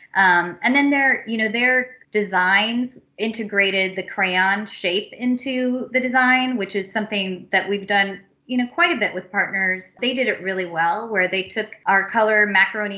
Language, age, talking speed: English, 30-49, 180 wpm